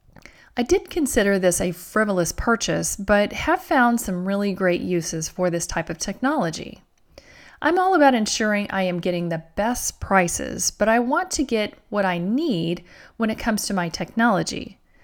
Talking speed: 170 wpm